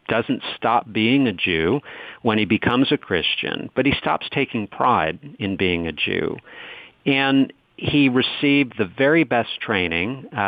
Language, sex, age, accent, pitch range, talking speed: English, male, 50-69, American, 100-125 Hz, 155 wpm